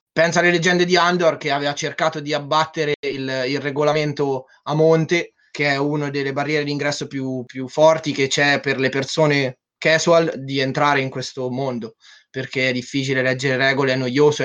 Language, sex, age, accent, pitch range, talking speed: Italian, male, 20-39, native, 130-160 Hz, 175 wpm